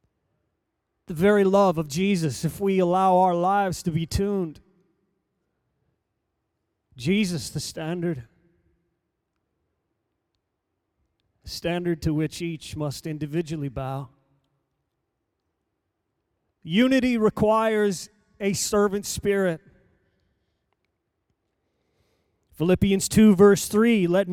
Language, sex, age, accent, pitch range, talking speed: English, male, 40-59, American, 135-190 Hz, 80 wpm